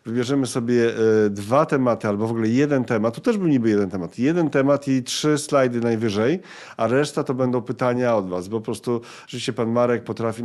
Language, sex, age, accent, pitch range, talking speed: Polish, male, 40-59, native, 105-130 Hz, 200 wpm